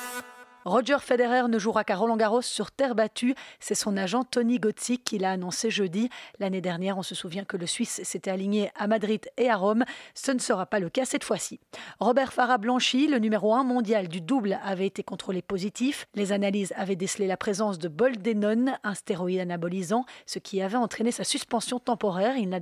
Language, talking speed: French, 195 wpm